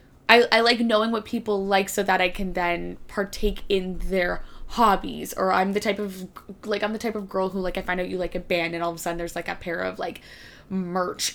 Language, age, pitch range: English, 10-29, 185-210 Hz